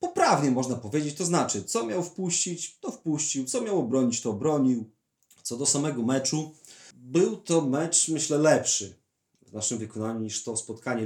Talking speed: 165 wpm